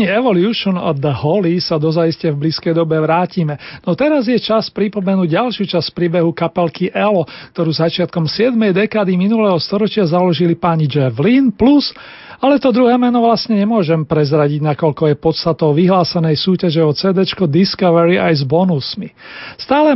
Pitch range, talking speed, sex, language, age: 160-205 Hz, 145 wpm, male, Slovak, 40-59